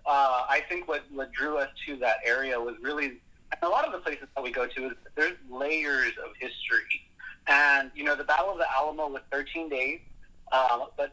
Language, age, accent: English, 30-49, American